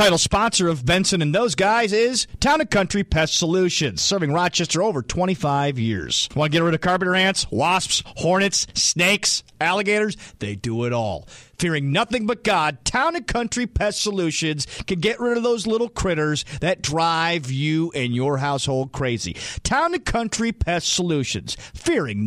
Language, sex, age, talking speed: English, male, 40-59, 165 wpm